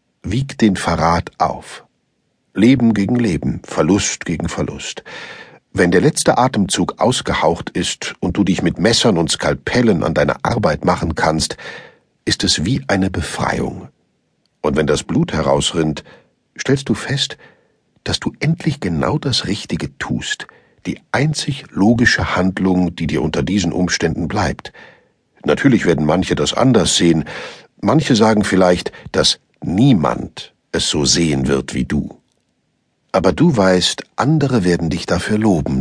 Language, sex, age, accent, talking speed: German, male, 60-79, German, 140 wpm